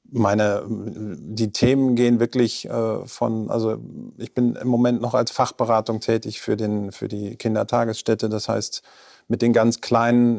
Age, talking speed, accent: 40-59, 155 wpm, German